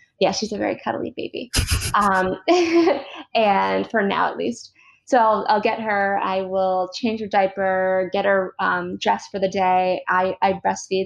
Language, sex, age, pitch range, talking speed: English, female, 20-39, 190-220 Hz, 175 wpm